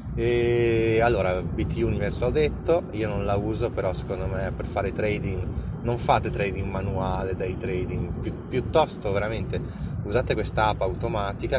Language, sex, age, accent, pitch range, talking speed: Italian, male, 20-39, native, 90-115 Hz, 150 wpm